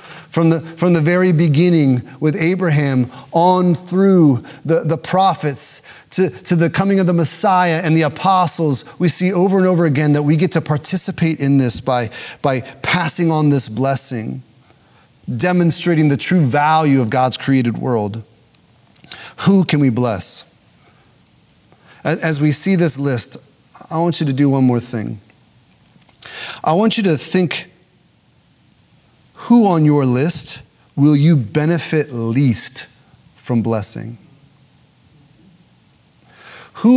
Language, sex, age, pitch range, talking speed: English, male, 30-49, 135-175 Hz, 135 wpm